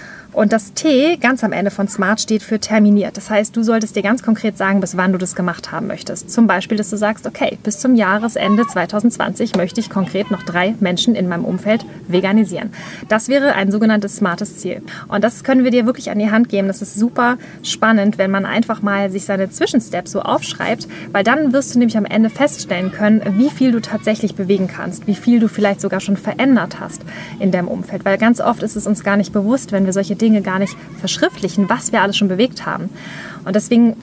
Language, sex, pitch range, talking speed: German, female, 195-230 Hz, 220 wpm